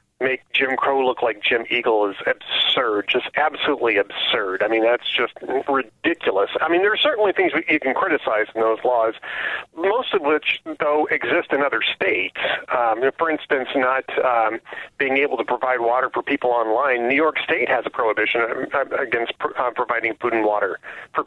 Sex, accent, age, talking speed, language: male, American, 40-59, 185 wpm, English